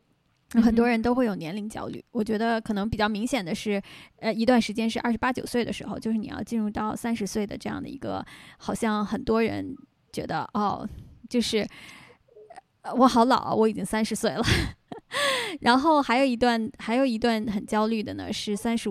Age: 20-39